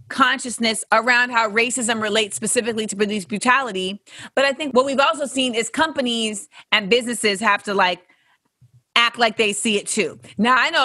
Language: English